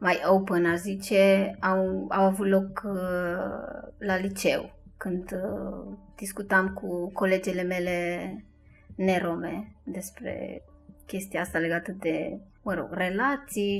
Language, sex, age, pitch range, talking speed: Romanian, female, 20-39, 170-195 Hz, 115 wpm